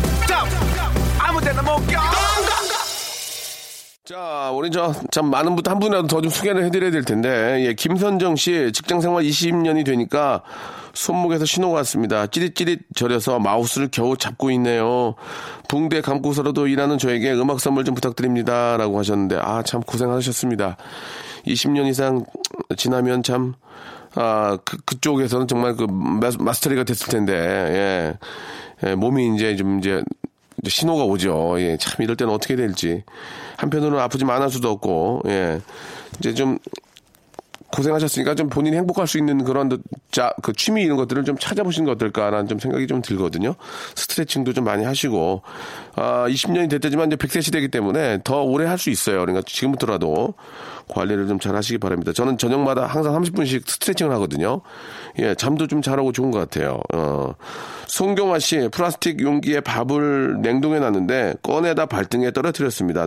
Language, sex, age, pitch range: Korean, male, 30-49, 115-155 Hz